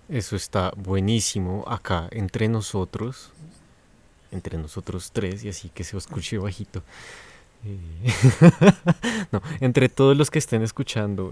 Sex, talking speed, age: male, 120 wpm, 20-39